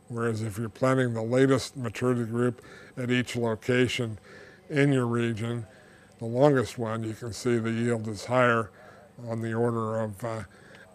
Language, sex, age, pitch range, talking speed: English, male, 60-79, 110-125 Hz, 155 wpm